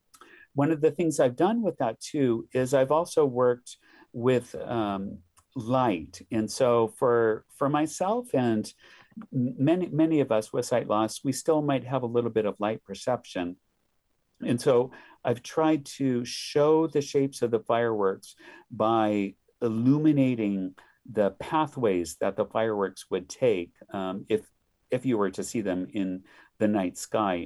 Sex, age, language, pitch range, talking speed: male, 50-69, English, 105-130 Hz, 155 wpm